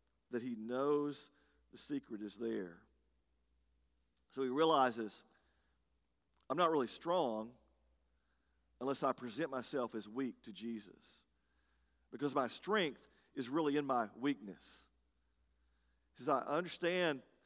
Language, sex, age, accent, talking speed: English, male, 40-59, American, 115 wpm